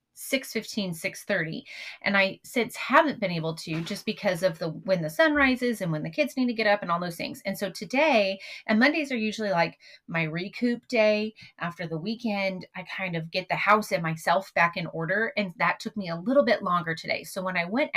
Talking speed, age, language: 230 wpm, 30-49, English